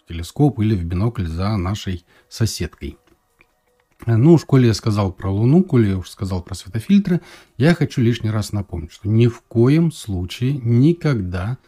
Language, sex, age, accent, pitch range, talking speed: Russian, male, 40-59, native, 95-135 Hz, 160 wpm